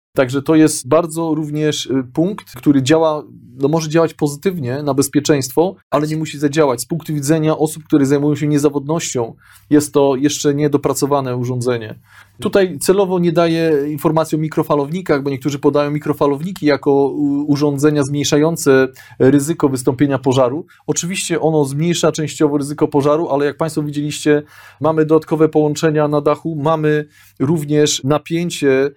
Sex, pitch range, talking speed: male, 140-155 Hz, 135 wpm